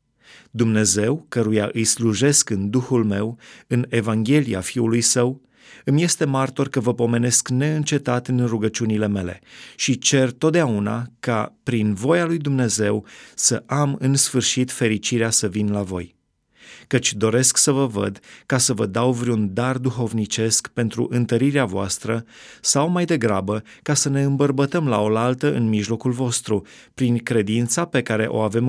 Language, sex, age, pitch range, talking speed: Romanian, male, 30-49, 110-140 Hz, 150 wpm